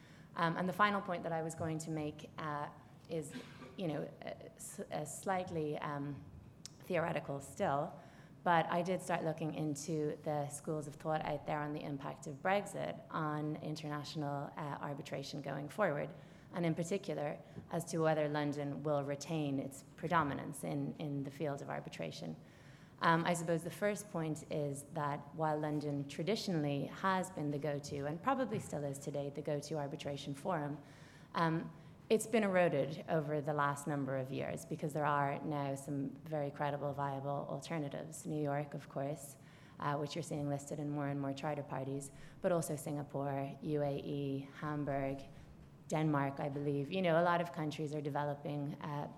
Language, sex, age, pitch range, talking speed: English, female, 20-39, 145-160 Hz, 165 wpm